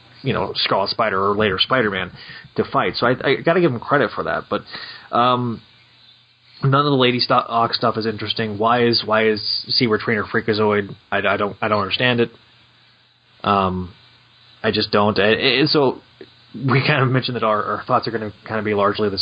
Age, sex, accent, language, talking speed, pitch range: 20-39, male, American, English, 195 wpm, 105-130 Hz